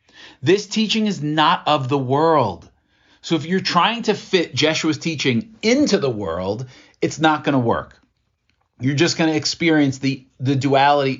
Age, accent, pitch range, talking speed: 40-59, American, 120-170 Hz, 160 wpm